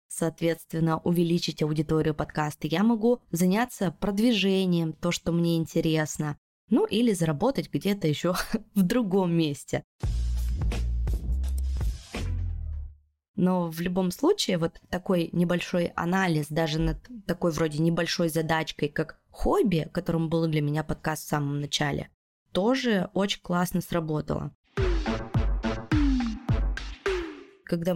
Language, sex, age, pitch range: Russian, female, 20-39, 155-185 Hz